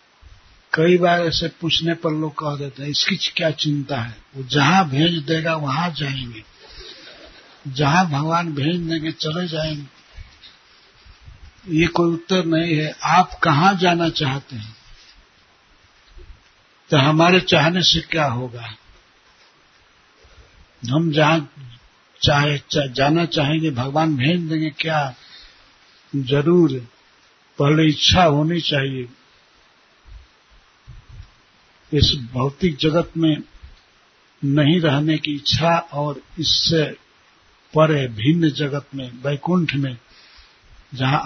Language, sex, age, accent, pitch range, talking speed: Hindi, male, 60-79, native, 130-160 Hz, 105 wpm